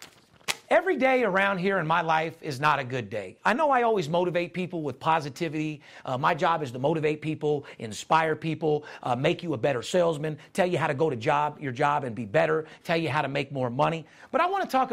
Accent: American